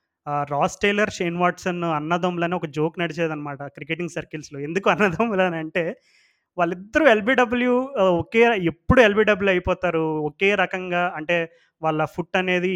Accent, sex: native, male